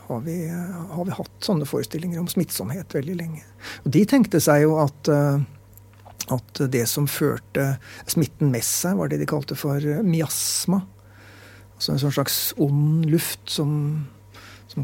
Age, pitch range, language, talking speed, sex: 60-79, 105-160 Hz, English, 160 wpm, male